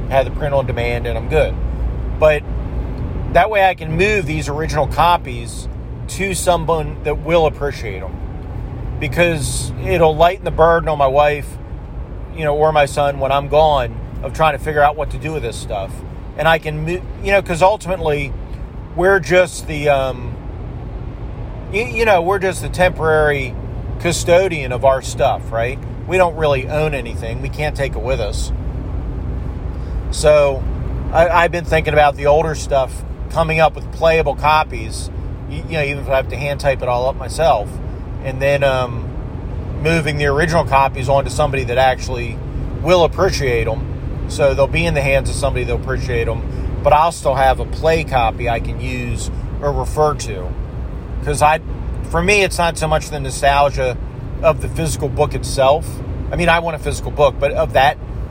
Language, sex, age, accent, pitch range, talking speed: English, male, 40-59, American, 120-155 Hz, 180 wpm